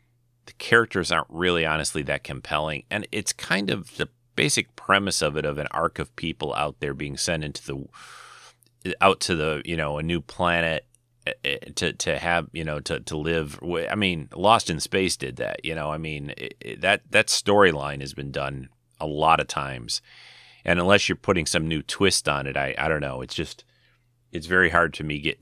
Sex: male